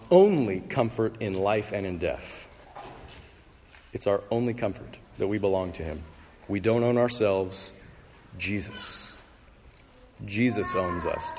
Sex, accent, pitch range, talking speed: male, American, 95-130 Hz, 130 wpm